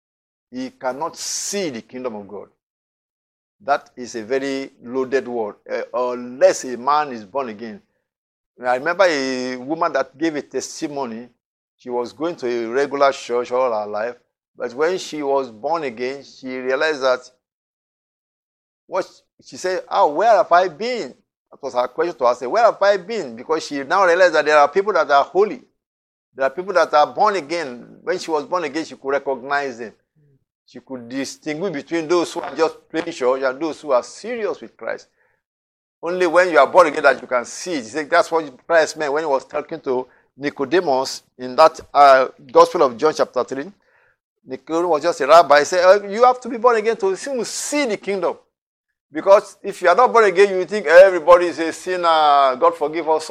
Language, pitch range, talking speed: English, 130-175 Hz, 195 wpm